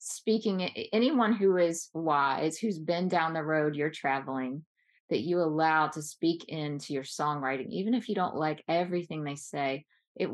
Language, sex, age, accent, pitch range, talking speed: English, female, 20-39, American, 155-205 Hz, 170 wpm